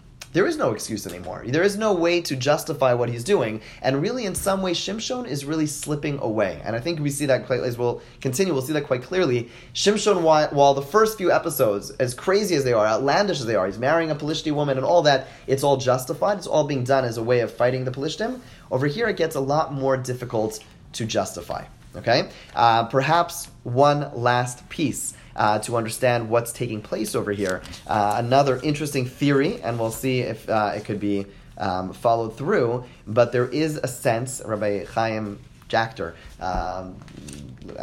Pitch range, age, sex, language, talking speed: 120-160 Hz, 20-39, male, English, 195 wpm